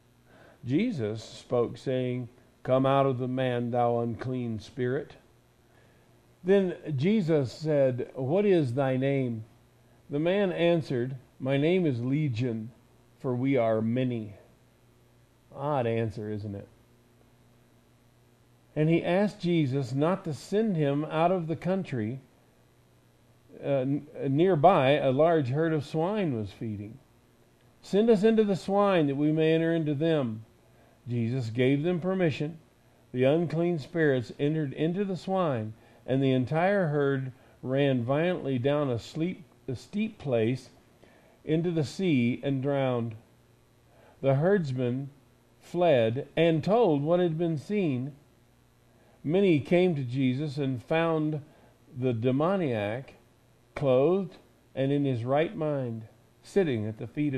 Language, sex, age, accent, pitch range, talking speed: English, male, 50-69, American, 120-160 Hz, 125 wpm